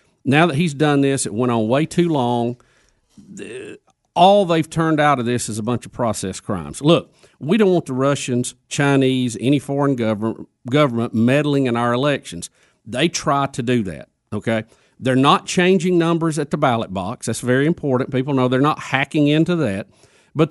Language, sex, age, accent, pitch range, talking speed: English, male, 50-69, American, 125-165 Hz, 185 wpm